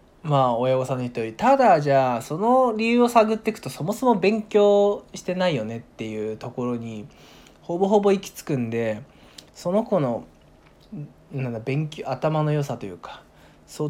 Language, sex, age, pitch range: Japanese, male, 20-39, 125-180 Hz